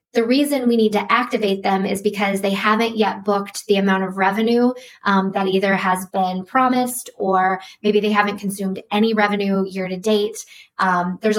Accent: American